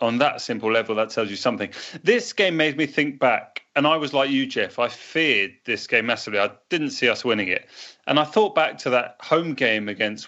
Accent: British